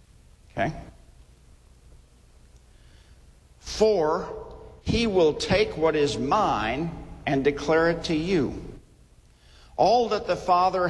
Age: 50-69